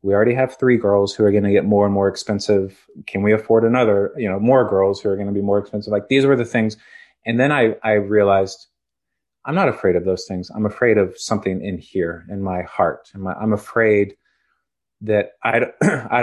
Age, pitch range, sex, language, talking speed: 30-49, 100-110 Hz, male, English, 215 wpm